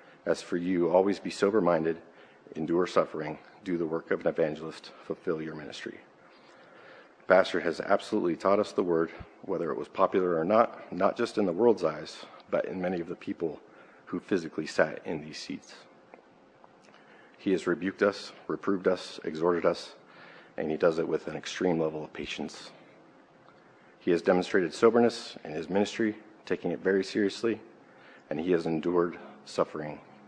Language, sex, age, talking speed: English, male, 40-59, 165 wpm